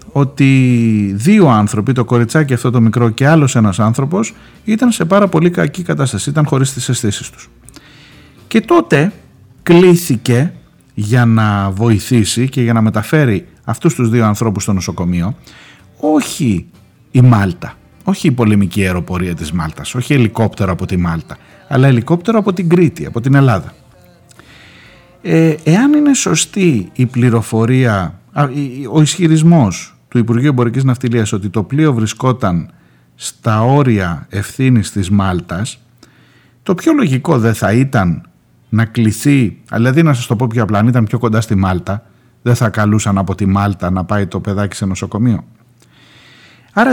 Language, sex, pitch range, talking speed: Greek, male, 105-155 Hz, 150 wpm